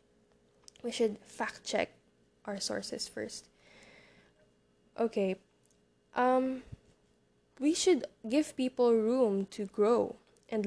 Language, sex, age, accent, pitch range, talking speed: English, female, 10-29, Filipino, 195-255 Hz, 90 wpm